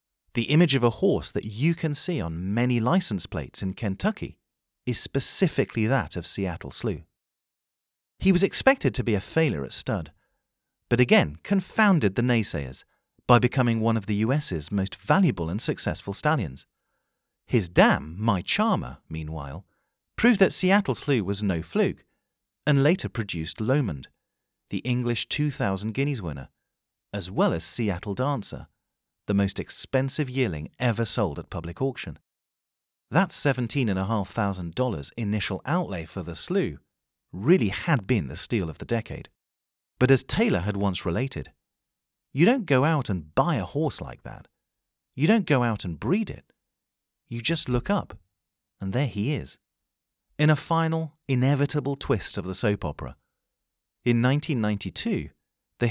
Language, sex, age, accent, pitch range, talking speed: English, male, 40-59, British, 95-140 Hz, 150 wpm